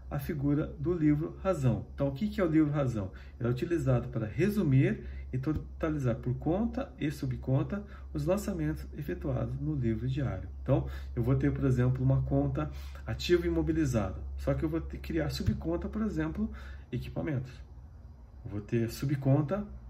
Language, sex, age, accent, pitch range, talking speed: Portuguese, male, 40-59, Brazilian, 95-155 Hz, 160 wpm